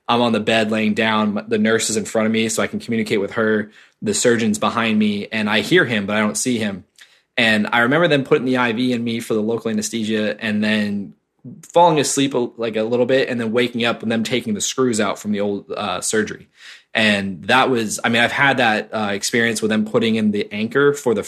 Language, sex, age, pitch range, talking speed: English, male, 20-39, 110-135 Hz, 245 wpm